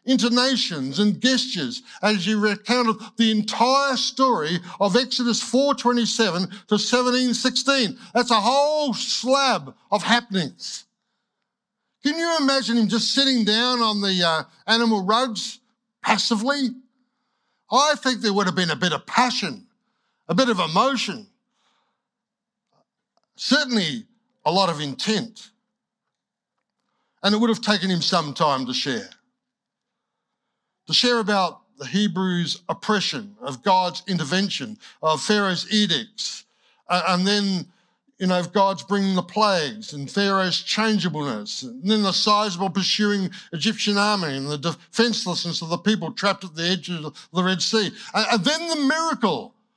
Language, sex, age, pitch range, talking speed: English, male, 60-79, 190-245 Hz, 135 wpm